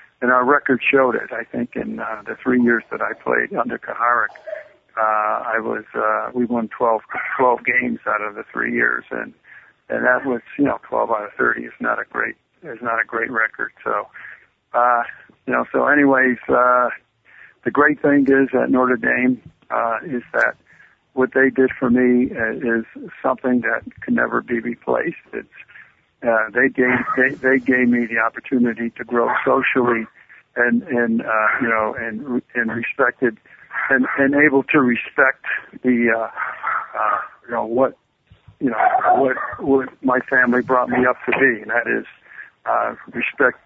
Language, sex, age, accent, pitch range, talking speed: English, male, 50-69, American, 120-130 Hz, 175 wpm